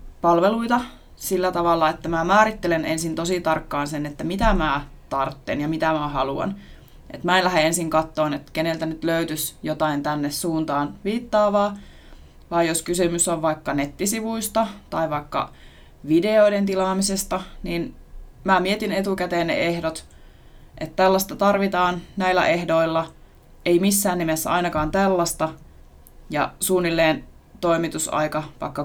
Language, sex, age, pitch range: Finnish, female, 20-39, 155-190 Hz